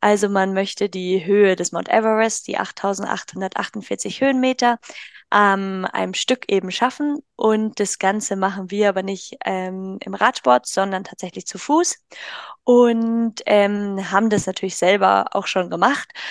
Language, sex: German, female